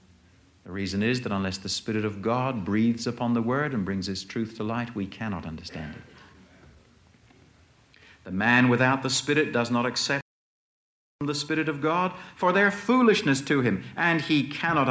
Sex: male